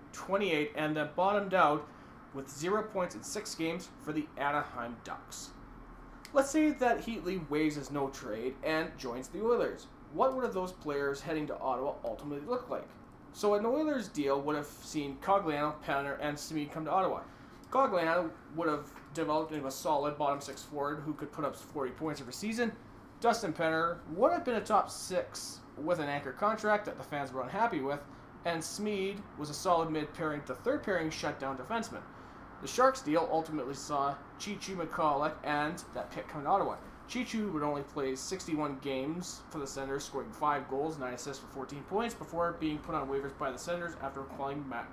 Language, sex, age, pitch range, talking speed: English, male, 30-49, 140-185 Hz, 185 wpm